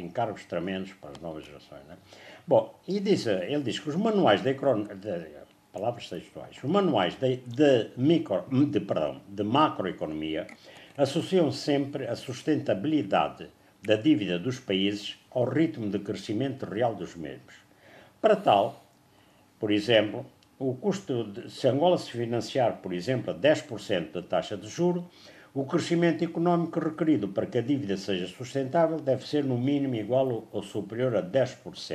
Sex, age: male, 60-79